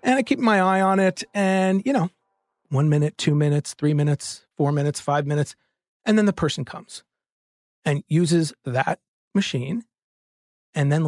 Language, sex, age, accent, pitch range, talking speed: English, male, 40-59, American, 155-235 Hz, 170 wpm